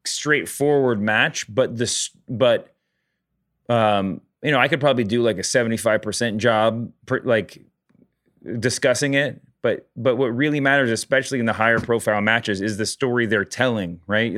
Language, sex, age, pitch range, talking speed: English, male, 30-49, 115-135 Hz, 155 wpm